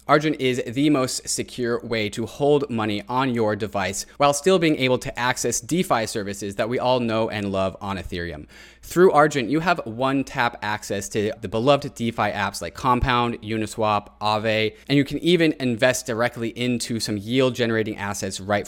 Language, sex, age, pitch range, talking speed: English, male, 20-39, 105-135 Hz, 180 wpm